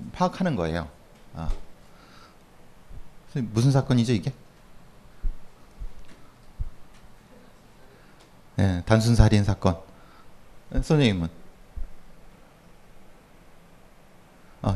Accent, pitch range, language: native, 110-165 Hz, Korean